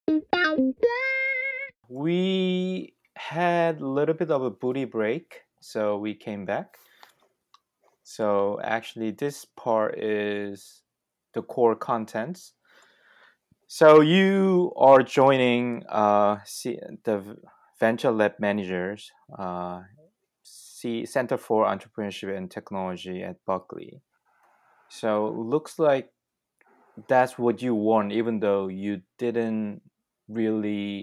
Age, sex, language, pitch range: 20-39, male, Korean, 100-135 Hz